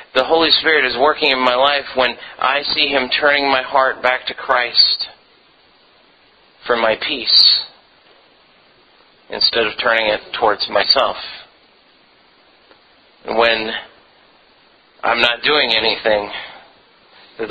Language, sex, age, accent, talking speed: English, male, 30-49, American, 115 wpm